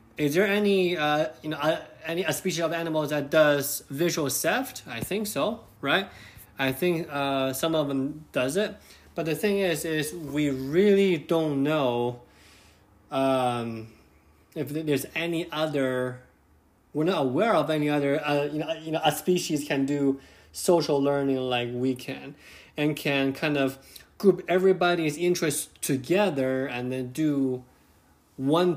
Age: 20-39